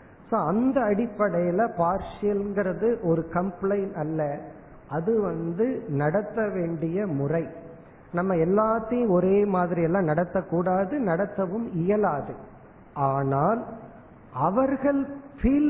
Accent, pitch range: native, 165-215 Hz